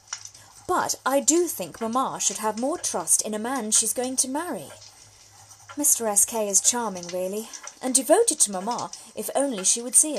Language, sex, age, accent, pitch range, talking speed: English, female, 20-39, British, 195-260 Hz, 185 wpm